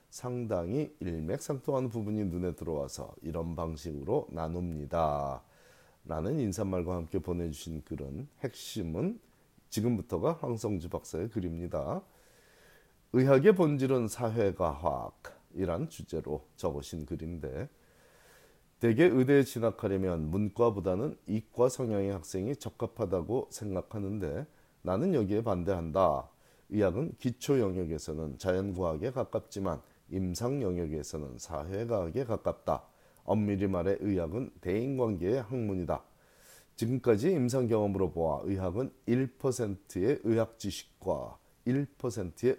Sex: male